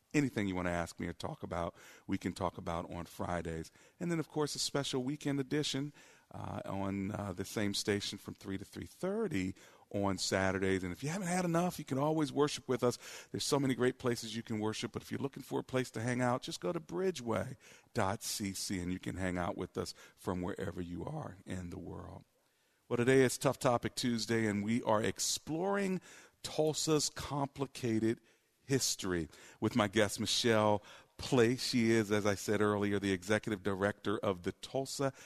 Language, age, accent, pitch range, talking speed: English, 50-69, American, 100-125 Hz, 190 wpm